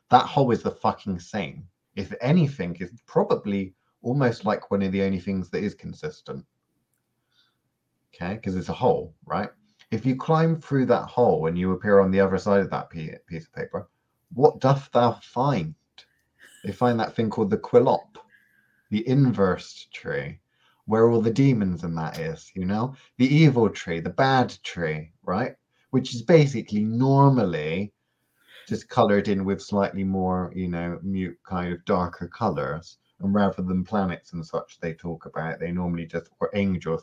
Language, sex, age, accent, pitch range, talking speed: English, male, 30-49, British, 90-115 Hz, 170 wpm